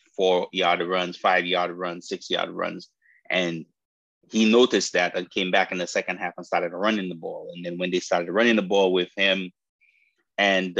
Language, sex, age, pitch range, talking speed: English, male, 30-49, 90-125 Hz, 185 wpm